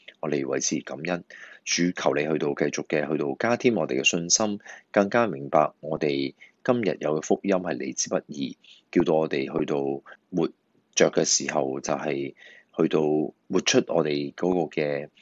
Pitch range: 75-100 Hz